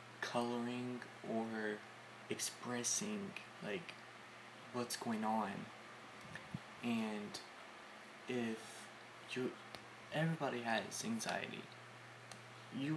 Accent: American